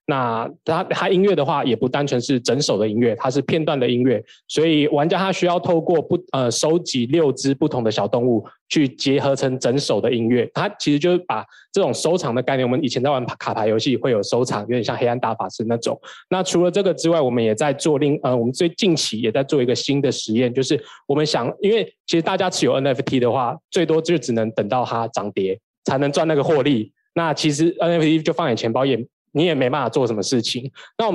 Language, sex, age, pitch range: Chinese, male, 20-39, 125-170 Hz